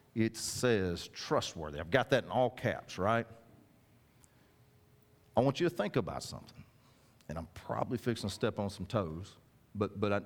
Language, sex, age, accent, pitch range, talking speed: English, male, 40-59, American, 105-130 Hz, 170 wpm